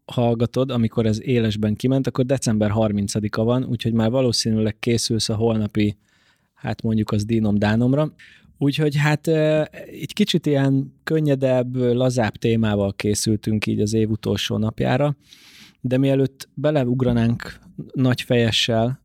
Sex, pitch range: male, 105-125 Hz